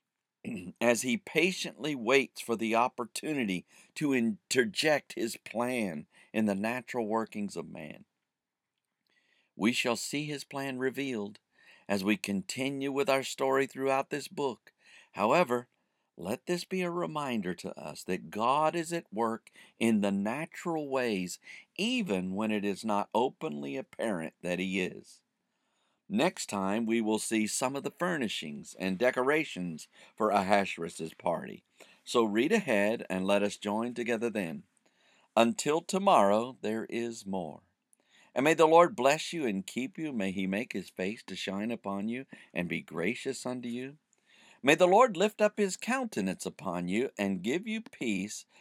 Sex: male